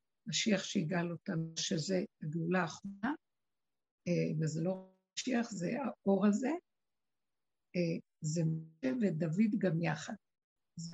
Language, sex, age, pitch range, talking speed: Hebrew, female, 60-79, 175-230 Hz, 100 wpm